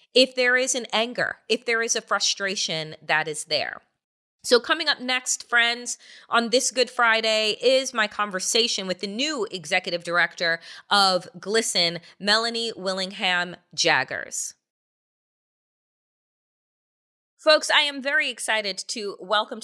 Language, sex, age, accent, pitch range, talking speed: English, female, 30-49, American, 180-225 Hz, 130 wpm